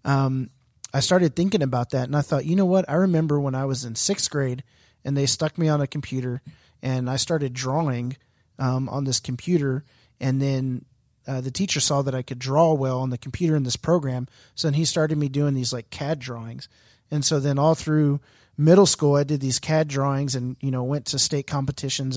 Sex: male